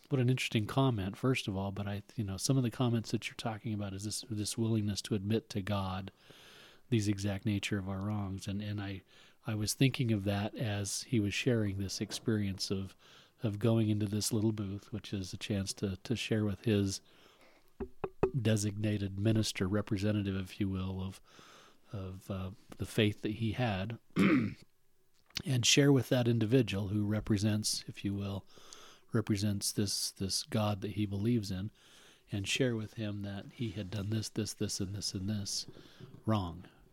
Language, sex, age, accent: English, male, 40-59, American